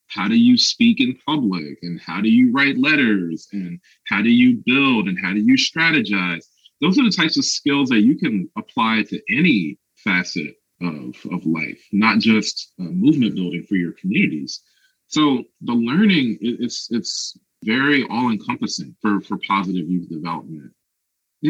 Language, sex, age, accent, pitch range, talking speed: English, male, 30-49, American, 95-135 Hz, 160 wpm